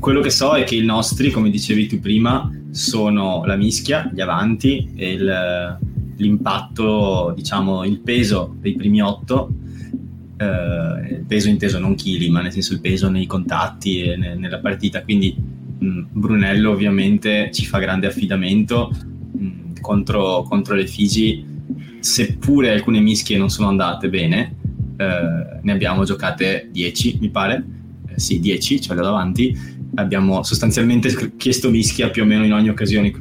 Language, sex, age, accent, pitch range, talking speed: Italian, male, 20-39, native, 95-120 Hz, 150 wpm